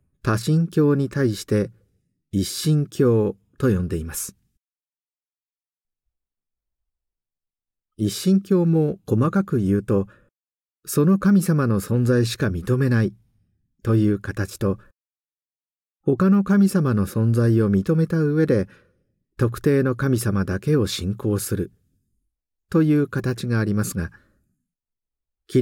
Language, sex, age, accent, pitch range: Japanese, male, 50-69, native, 95-140 Hz